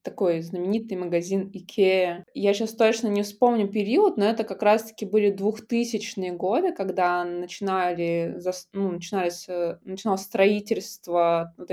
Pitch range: 180-220 Hz